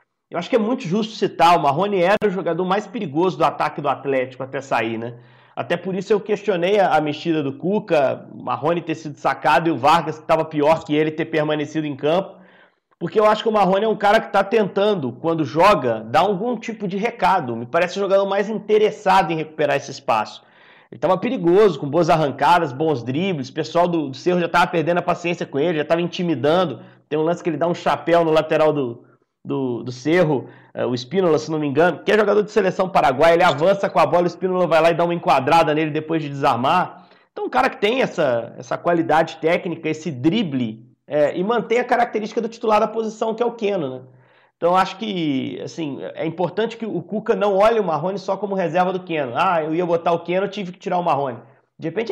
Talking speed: 225 wpm